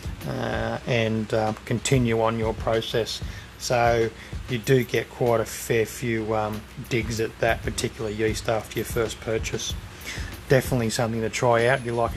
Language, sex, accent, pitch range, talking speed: English, male, Australian, 110-135 Hz, 165 wpm